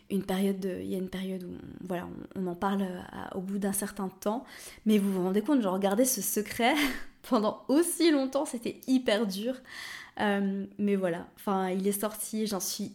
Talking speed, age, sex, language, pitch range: 210 wpm, 20-39, female, French, 195-235 Hz